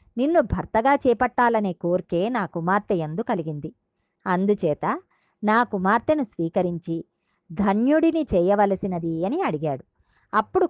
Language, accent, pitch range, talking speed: Telugu, native, 175-245 Hz, 95 wpm